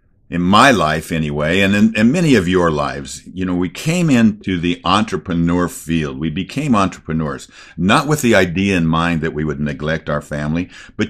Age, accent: 50-69, American